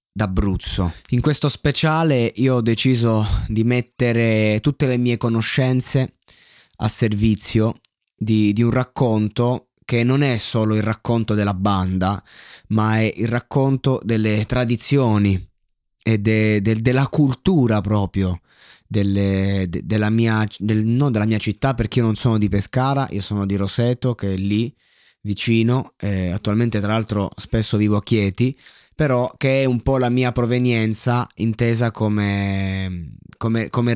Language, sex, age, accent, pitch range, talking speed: Italian, male, 20-39, native, 105-130 Hz, 145 wpm